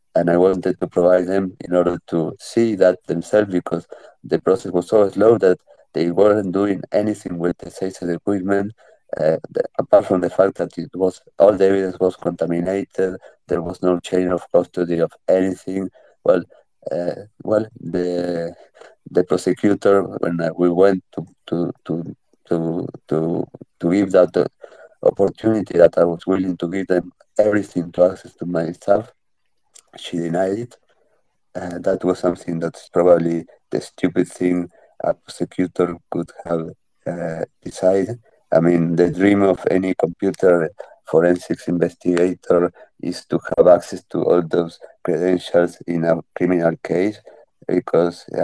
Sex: male